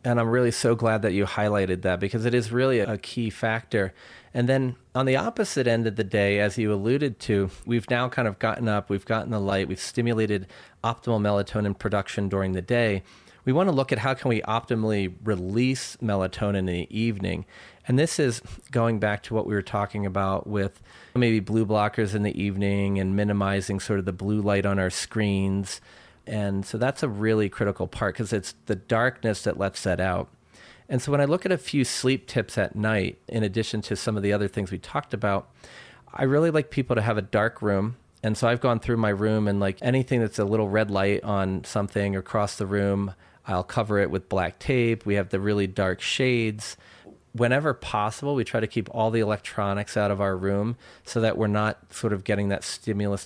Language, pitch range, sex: English, 100-115 Hz, male